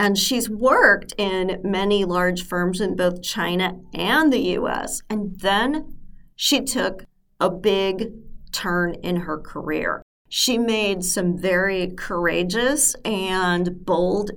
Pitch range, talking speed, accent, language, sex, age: 170-205 Hz, 125 wpm, American, English, female, 40-59